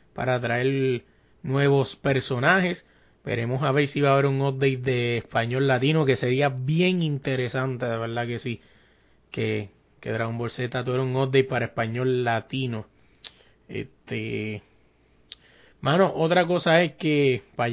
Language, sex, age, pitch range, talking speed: Spanish, male, 30-49, 130-160 Hz, 145 wpm